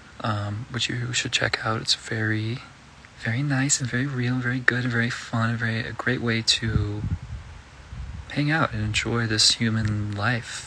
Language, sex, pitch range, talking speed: English, male, 100-120 Hz, 175 wpm